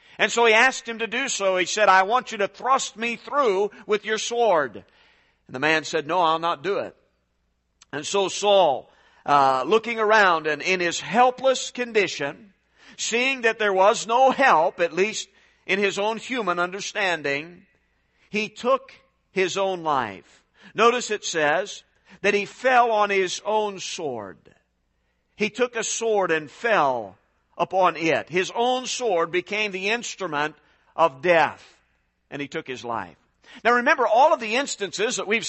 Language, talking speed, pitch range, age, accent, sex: English, 165 wpm, 175-245 Hz, 50-69, American, male